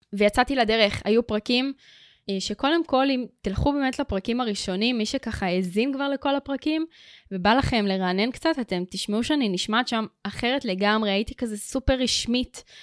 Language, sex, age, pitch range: Hebrew, female, 20-39, 195-250 Hz